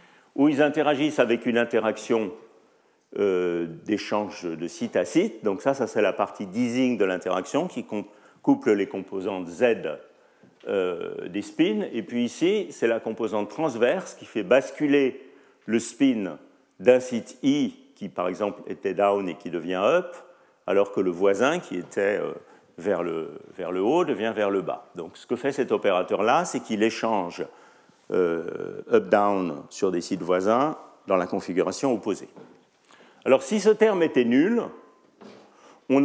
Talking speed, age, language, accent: 160 wpm, 50-69, French, French